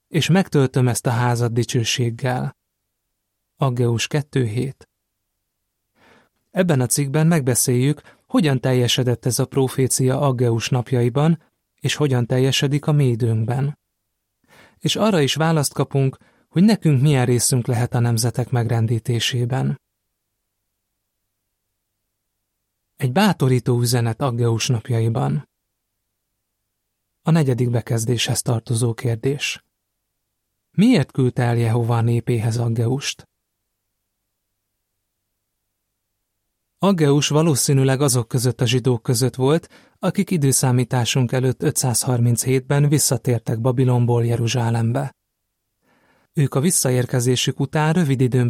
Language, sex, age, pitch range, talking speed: Hungarian, male, 30-49, 115-140 Hz, 95 wpm